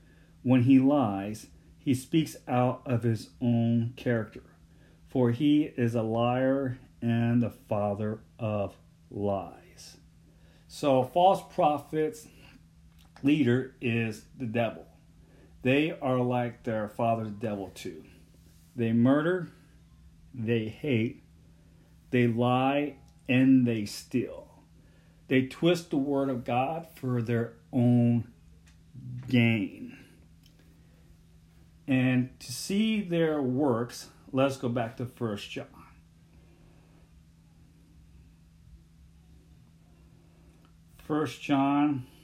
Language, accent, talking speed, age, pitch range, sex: English, American, 95 wpm, 40-59, 80-130 Hz, male